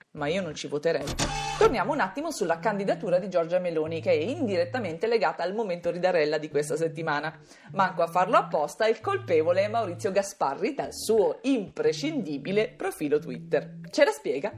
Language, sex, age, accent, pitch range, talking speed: Italian, female, 40-59, native, 165-265 Hz, 165 wpm